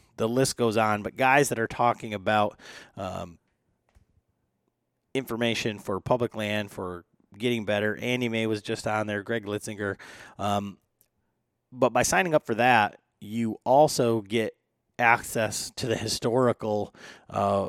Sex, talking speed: male, 140 wpm